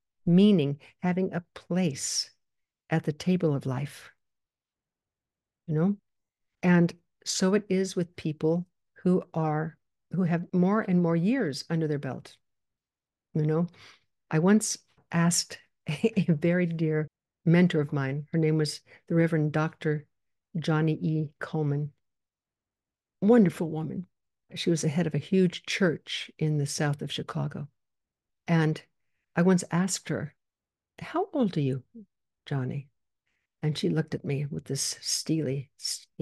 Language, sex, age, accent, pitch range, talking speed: English, female, 60-79, American, 145-175 Hz, 140 wpm